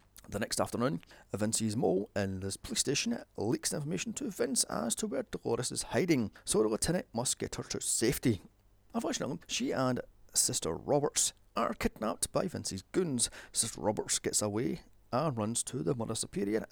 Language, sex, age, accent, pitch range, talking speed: English, male, 30-49, British, 100-140 Hz, 170 wpm